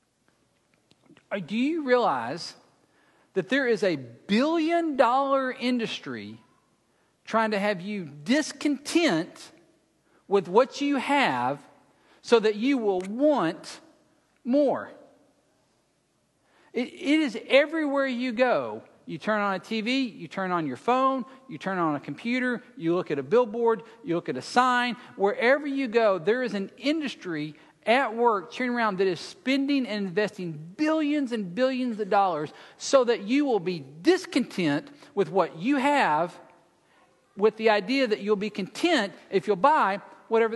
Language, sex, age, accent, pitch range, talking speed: English, male, 50-69, American, 195-275 Hz, 140 wpm